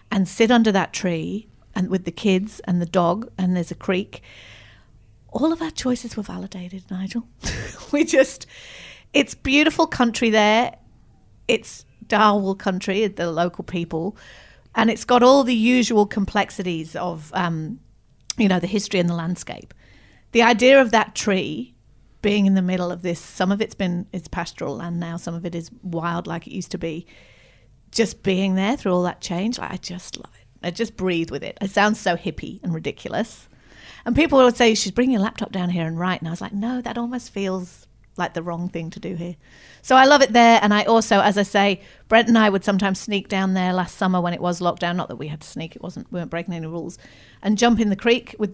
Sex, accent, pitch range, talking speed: female, British, 175-230 Hz, 210 wpm